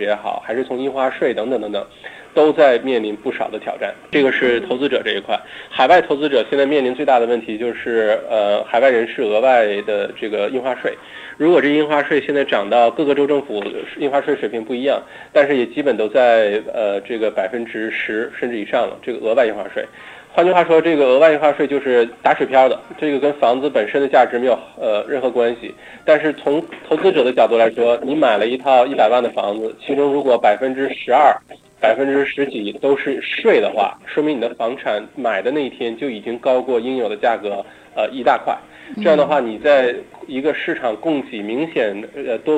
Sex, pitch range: male, 120-145 Hz